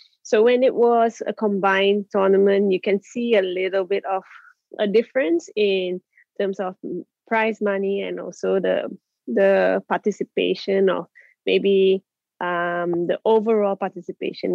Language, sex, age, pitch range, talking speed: English, female, 20-39, 185-215 Hz, 130 wpm